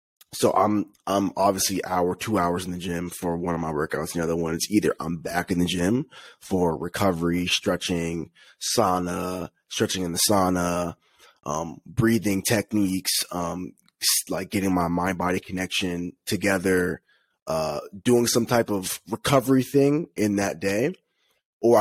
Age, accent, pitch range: 20-39, American, 90-100 Hz